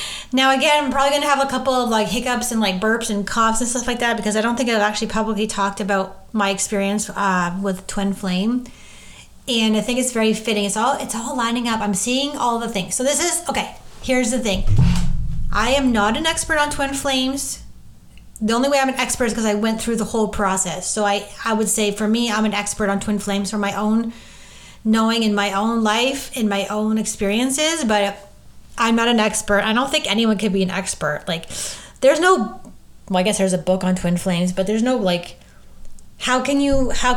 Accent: American